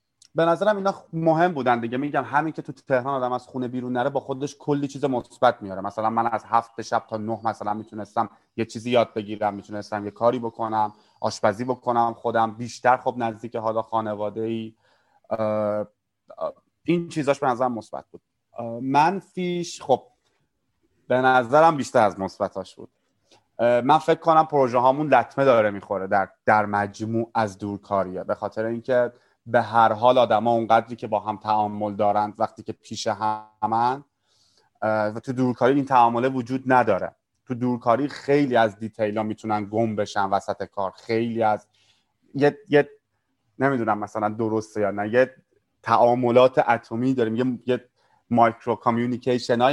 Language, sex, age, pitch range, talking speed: Persian, male, 30-49, 110-140 Hz, 155 wpm